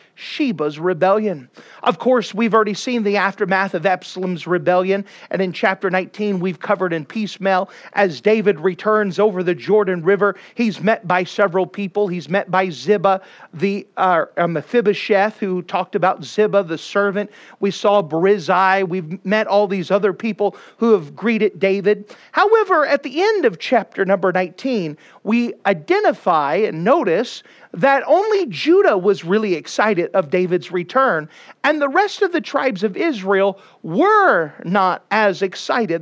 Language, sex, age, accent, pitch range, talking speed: English, male, 40-59, American, 185-235 Hz, 150 wpm